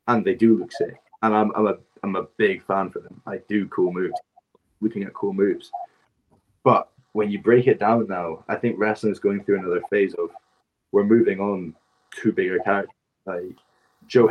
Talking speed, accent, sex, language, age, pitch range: 195 wpm, British, male, English, 20-39, 100-120 Hz